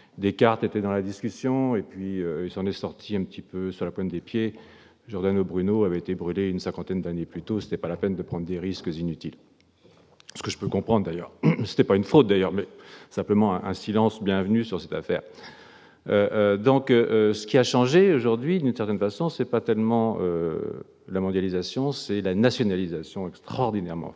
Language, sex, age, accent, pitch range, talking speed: French, male, 50-69, French, 95-125 Hz, 210 wpm